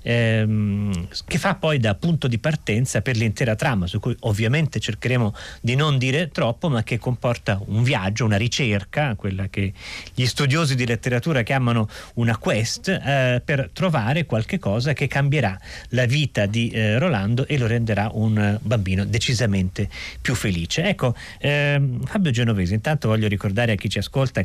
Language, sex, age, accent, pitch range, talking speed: Italian, male, 40-59, native, 105-135 Hz, 160 wpm